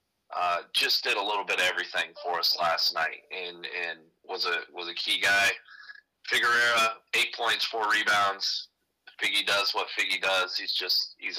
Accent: American